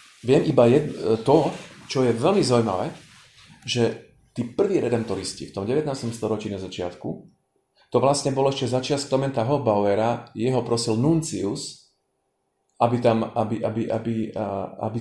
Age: 30-49